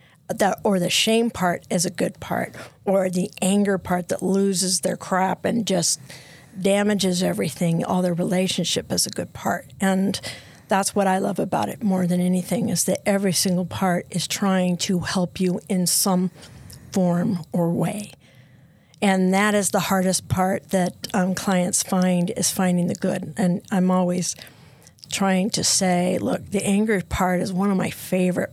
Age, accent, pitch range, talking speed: 50-69, American, 175-195 Hz, 170 wpm